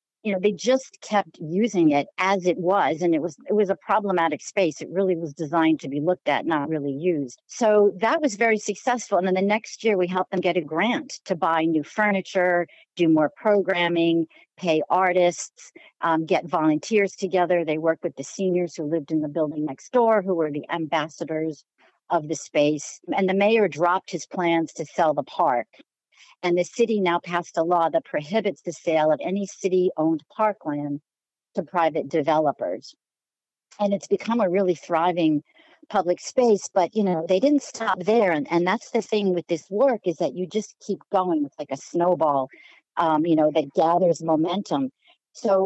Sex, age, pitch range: female, 50-69, 165-205 Hz